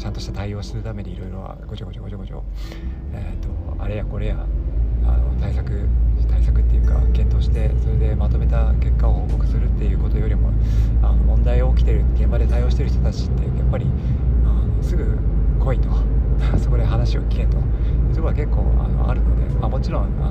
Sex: male